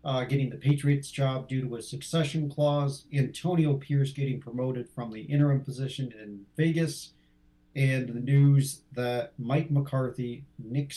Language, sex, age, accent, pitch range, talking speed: English, male, 50-69, American, 120-140 Hz, 150 wpm